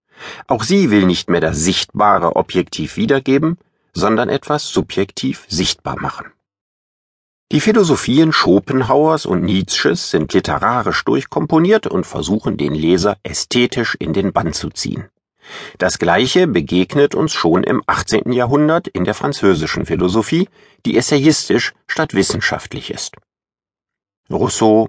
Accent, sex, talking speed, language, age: German, male, 120 wpm, German, 50-69